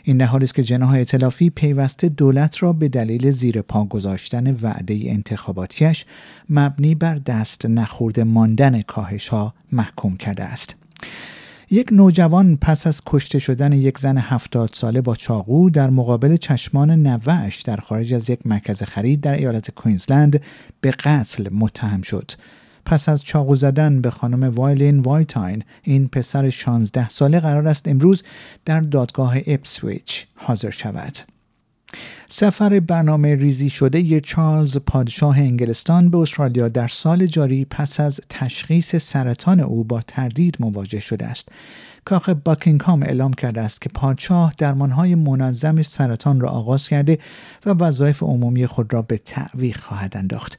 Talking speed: 145 wpm